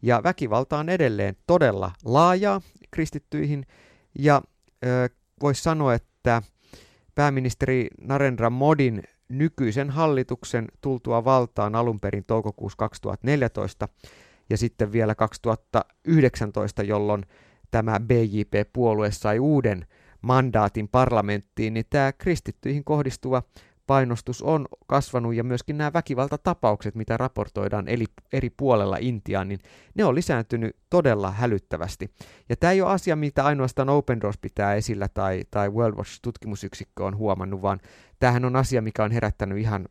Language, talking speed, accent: Finnish, 120 wpm, native